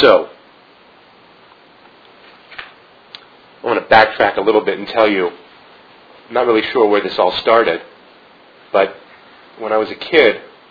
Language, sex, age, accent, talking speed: English, male, 30-49, American, 140 wpm